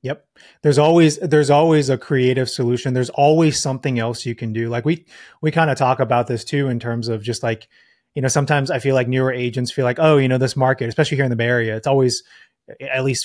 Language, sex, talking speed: English, male, 245 wpm